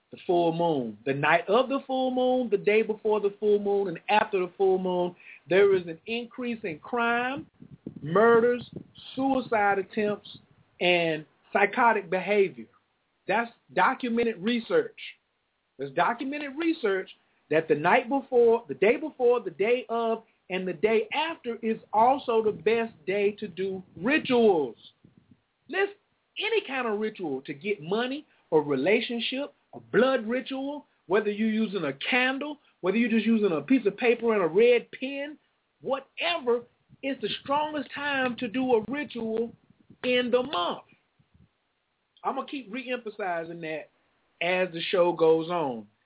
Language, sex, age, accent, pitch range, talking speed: English, male, 40-59, American, 195-255 Hz, 145 wpm